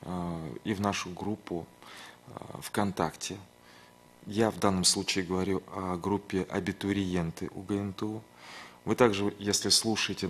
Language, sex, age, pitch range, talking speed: Russian, male, 30-49, 90-110 Hz, 105 wpm